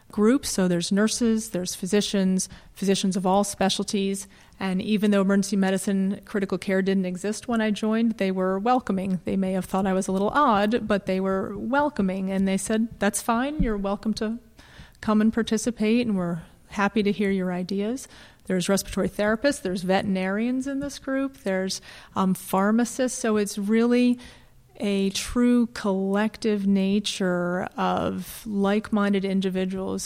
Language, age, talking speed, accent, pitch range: English, 30-49, 155 wpm, American, 190-215 Hz